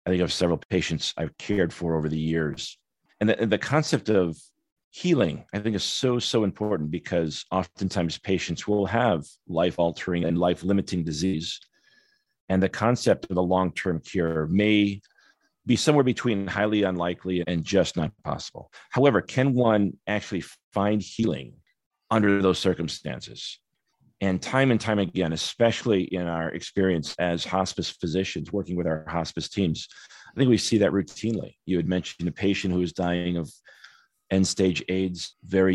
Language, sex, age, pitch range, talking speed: English, male, 40-59, 85-105 Hz, 160 wpm